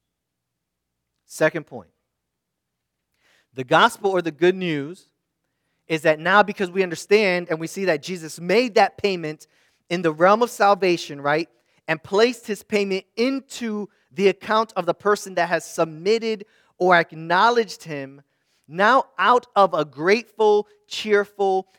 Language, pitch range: English, 110-185 Hz